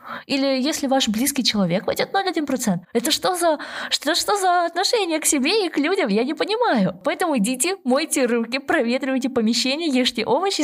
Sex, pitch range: female, 180-265 Hz